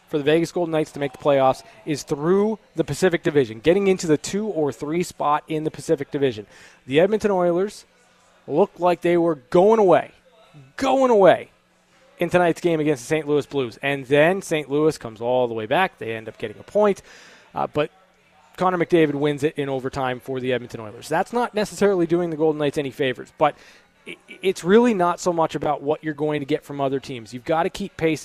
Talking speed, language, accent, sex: 210 wpm, English, American, male